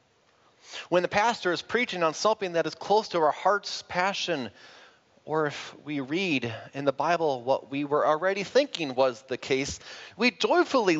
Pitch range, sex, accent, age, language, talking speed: 120-170 Hz, male, American, 30-49, English, 170 wpm